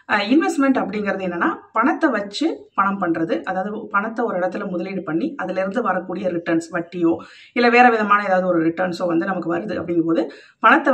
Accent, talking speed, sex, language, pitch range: native, 155 wpm, female, Tamil, 170-230 Hz